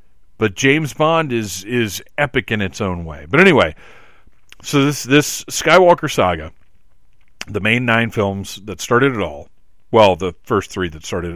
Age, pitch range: 40-59, 90-115 Hz